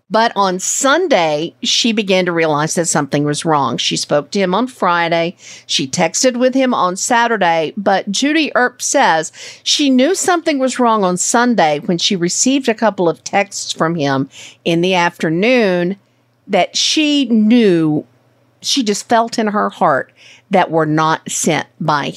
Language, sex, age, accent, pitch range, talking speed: English, female, 50-69, American, 165-230 Hz, 160 wpm